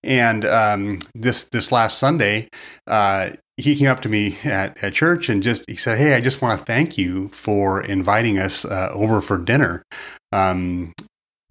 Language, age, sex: English, 30-49, male